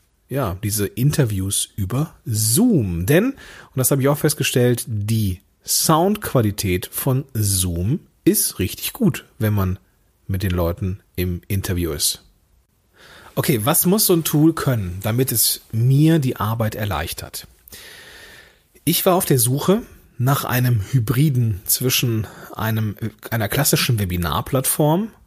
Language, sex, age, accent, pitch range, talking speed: German, male, 40-59, German, 95-145 Hz, 125 wpm